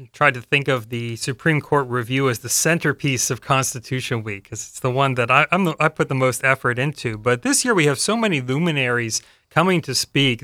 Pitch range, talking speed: 115-135 Hz, 225 wpm